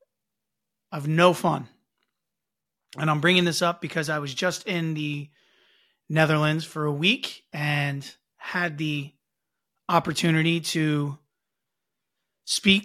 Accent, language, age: American, English, 30-49